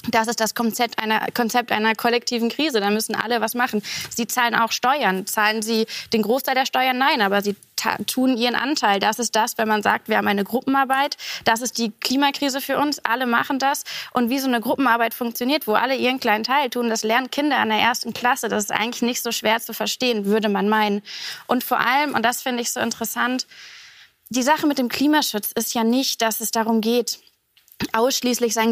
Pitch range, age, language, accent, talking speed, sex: 220-255 Hz, 20-39, German, German, 215 wpm, female